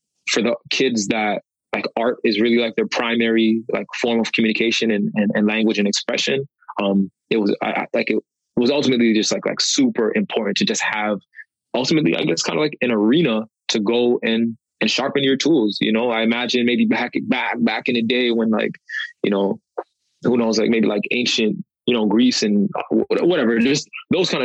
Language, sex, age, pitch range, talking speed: English, male, 20-39, 105-120 Hz, 195 wpm